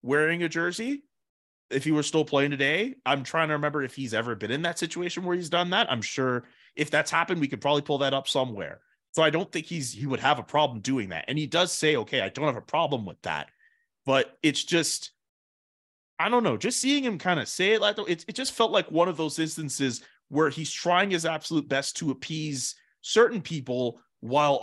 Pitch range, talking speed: 135-165 Hz, 225 wpm